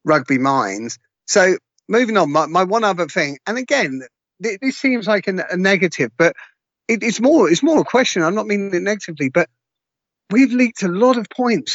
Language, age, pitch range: English, 40-59, 175-220 Hz